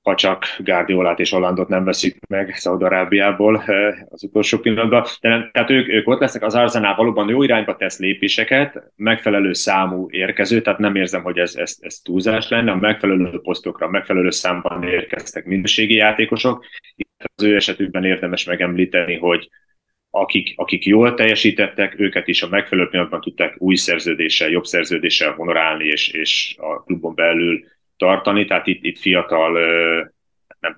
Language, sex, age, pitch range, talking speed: Hungarian, male, 30-49, 90-110 Hz, 155 wpm